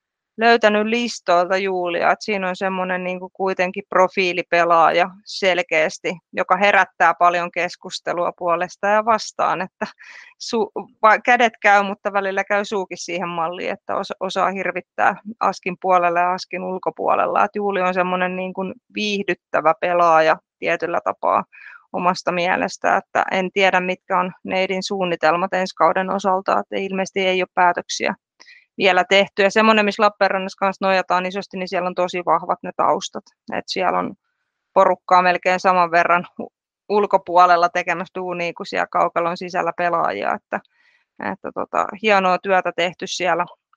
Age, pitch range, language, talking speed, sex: 20-39, 180-205 Hz, Finnish, 135 wpm, female